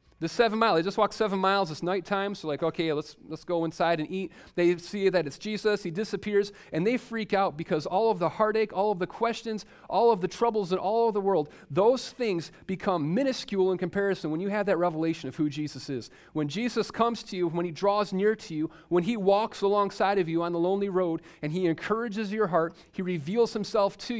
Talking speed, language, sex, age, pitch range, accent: 230 wpm, English, male, 30-49, 150-200 Hz, American